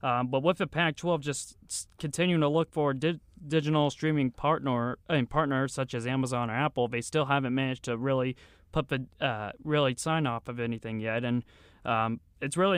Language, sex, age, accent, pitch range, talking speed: English, male, 20-39, American, 120-155 Hz, 195 wpm